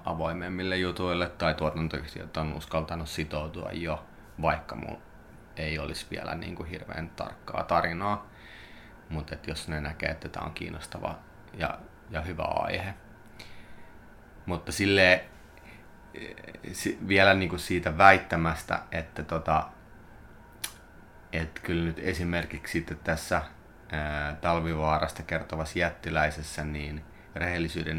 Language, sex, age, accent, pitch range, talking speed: Finnish, male, 30-49, native, 80-90 Hz, 105 wpm